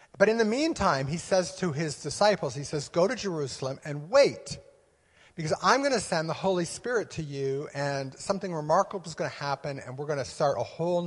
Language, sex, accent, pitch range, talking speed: English, male, American, 135-175 Hz, 215 wpm